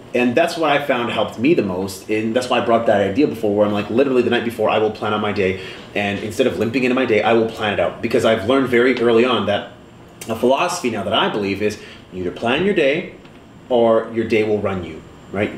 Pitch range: 105-130 Hz